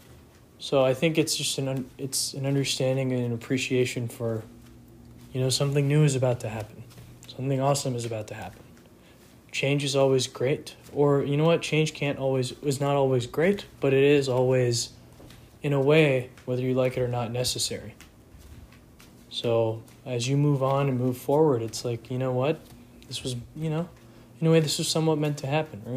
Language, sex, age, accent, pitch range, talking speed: English, male, 20-39, American, 120-135 Hz, 195 wpm